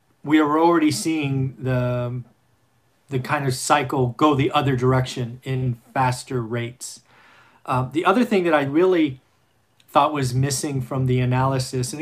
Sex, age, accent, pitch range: male, 40-59, American, 125-155 Hz